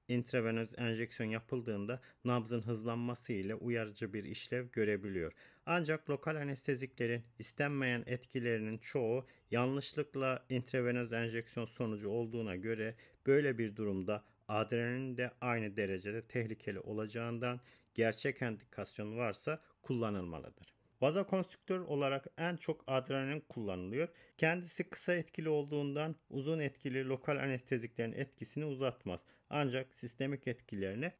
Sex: male